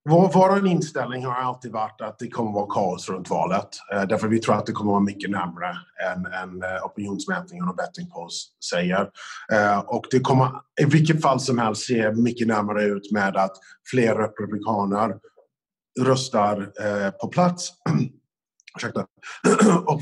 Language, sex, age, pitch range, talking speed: Swedish, male, 30-49, 105-135 Hz, 145 wpm